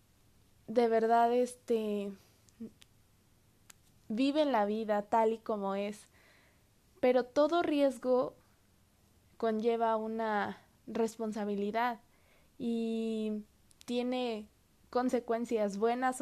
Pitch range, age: 210-255 Hz, 20-39